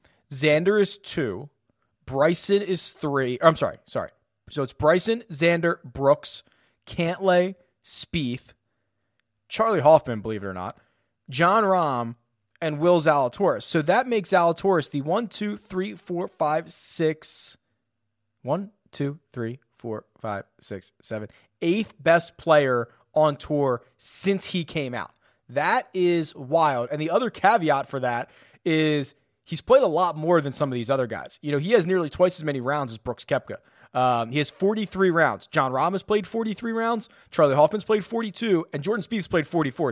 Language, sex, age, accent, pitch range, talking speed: English, male, 30-49, American, 125-180 Hz, 160 wpm